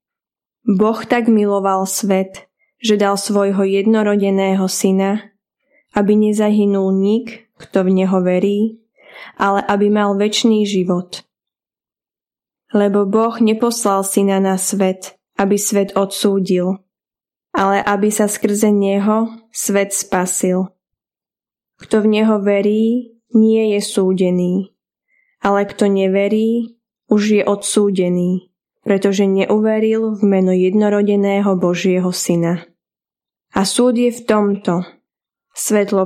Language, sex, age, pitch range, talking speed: Slovak, female, 10-29, 190-220 Hz, 105 wpm